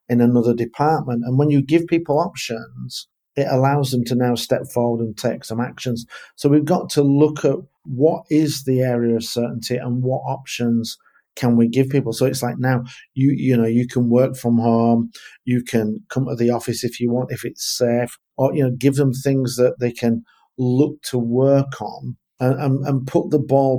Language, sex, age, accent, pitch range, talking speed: English, male, 50-69, British, 120-140 Hz, 200 wpm